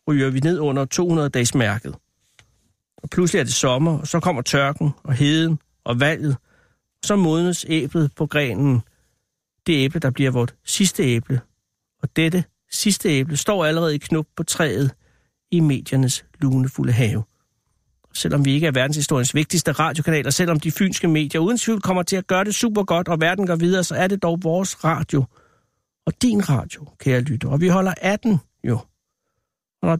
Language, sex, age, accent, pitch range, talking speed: Danish, male, 60-79, native, 140-175 Hz, 170 wpm